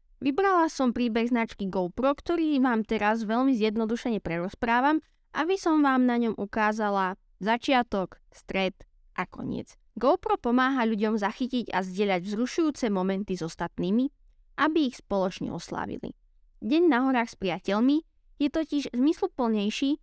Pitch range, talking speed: 200-275 Hz, 130 wpm